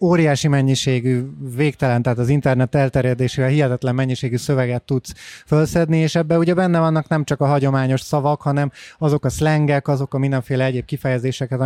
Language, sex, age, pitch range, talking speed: Hungarian, male, 30-49, 135-165 Hz, 160 wpm